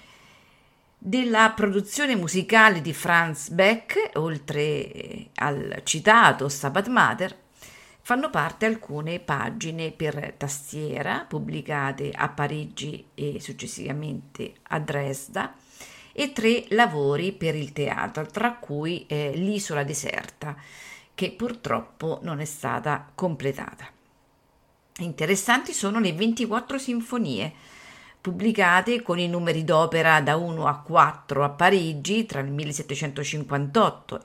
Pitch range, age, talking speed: 145-210 Hz, 50-69, 105 wpm